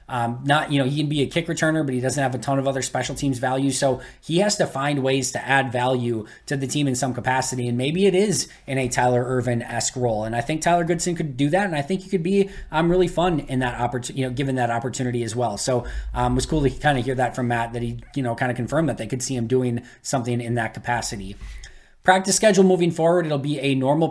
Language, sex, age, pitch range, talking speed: English, male, 20-39, 120-145 Hz, 270 wpm